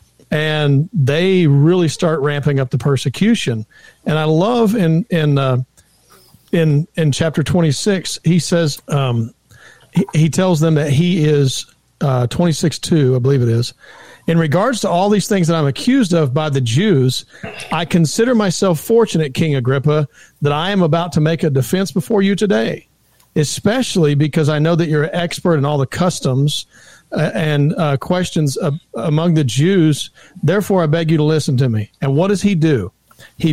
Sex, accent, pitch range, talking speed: male, American, 140-170 Hz, 175 wpm